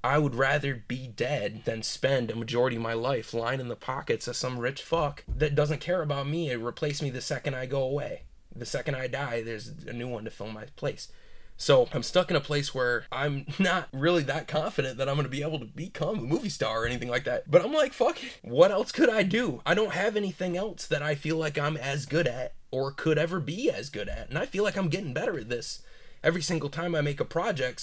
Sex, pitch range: male, 120-165 Hz